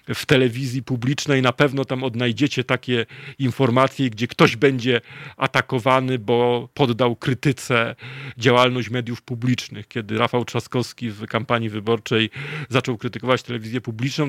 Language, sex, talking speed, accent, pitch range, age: Polish, male, 120 wpm, native, 120-150 Hz, 40-59